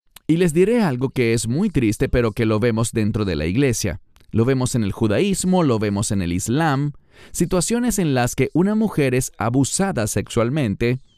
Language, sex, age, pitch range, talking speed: English, male, 40-59, 105-160 Hz, 190 wpm